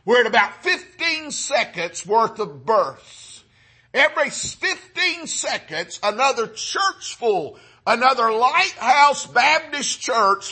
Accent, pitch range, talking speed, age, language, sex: American, 220-275 Hz, 105 wpm, 50-69, English, male